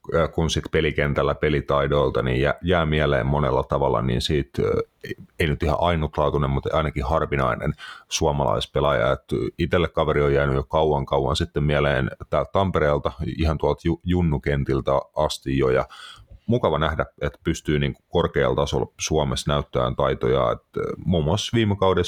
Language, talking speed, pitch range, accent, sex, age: Finnish, 135 wpm, 70-85 Hz, native, male, 30-49